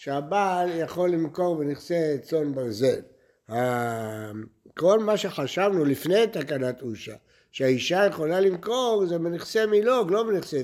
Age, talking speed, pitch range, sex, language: 60-79, 115 wpm, 135-190 Hz, male, Hebrew